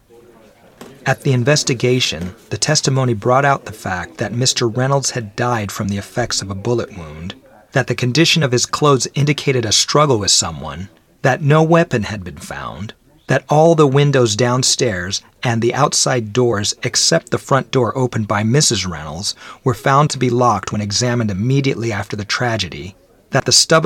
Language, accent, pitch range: English, American, 105-130 Hz